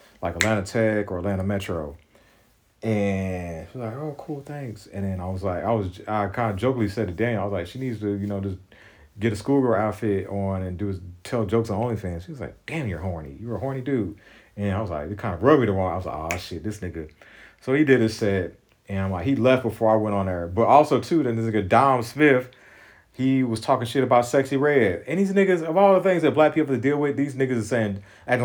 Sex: male